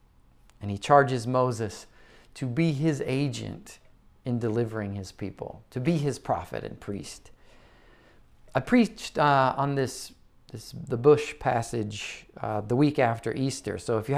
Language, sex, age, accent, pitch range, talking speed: English, male, 40-59, American, 115-160 Hz, 150 wpm